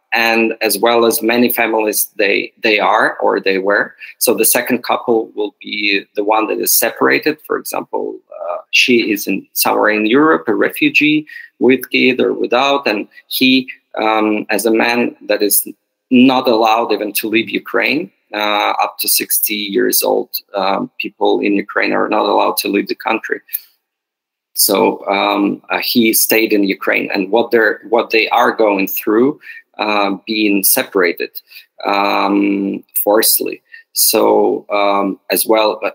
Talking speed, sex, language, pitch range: 155 wpm, male, English, 105-130 Hz